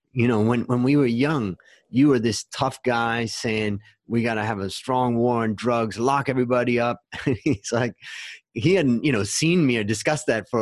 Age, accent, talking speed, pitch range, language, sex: 30-49, American, 210 wpm, 95-115 Hz, English, male